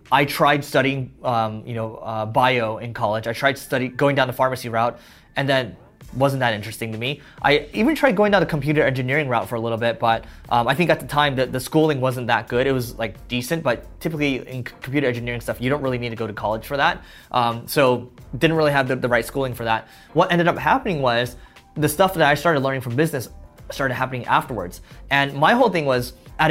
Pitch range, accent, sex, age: 120-150 Hz, American, male, 20-39